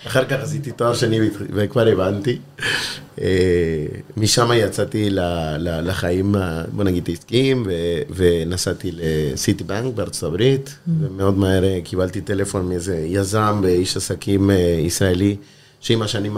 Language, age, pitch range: Hebrew, 30-49, 90-115 Hz